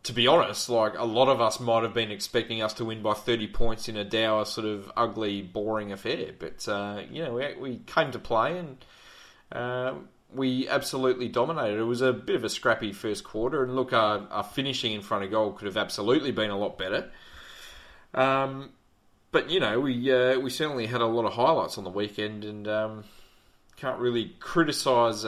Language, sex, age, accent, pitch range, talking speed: English, male, 20-39, Australian, 105-125 Hz, 205 wpm